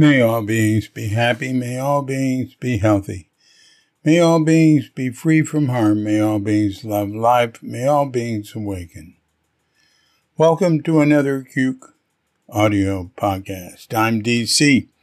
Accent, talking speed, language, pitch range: American, 135 wpm, English, 105-135 Hz